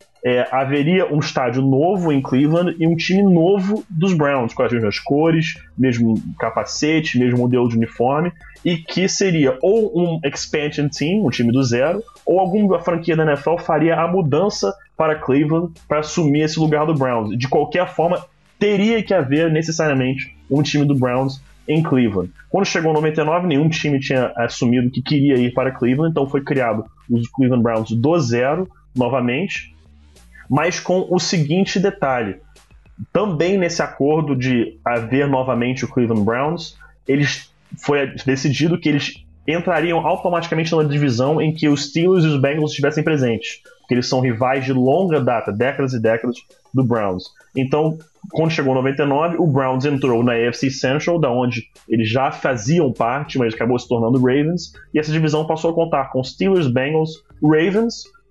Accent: Brazilian